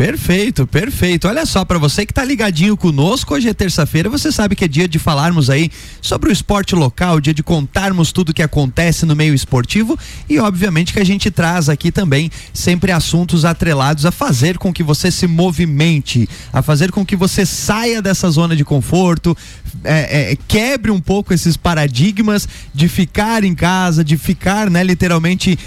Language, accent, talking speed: Portuguese, Brazilian, 180 wpm